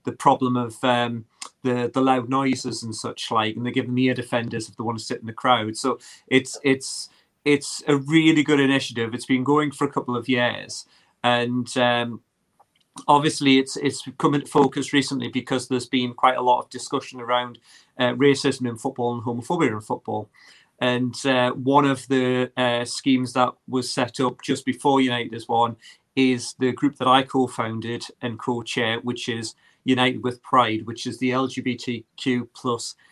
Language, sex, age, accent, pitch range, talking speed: English, male, 30-49, British, 120-135 Hz, 185 wpm